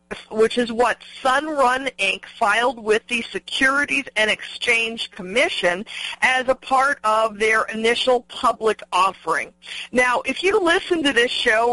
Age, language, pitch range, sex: 50-69, English, 210-265 Hz, female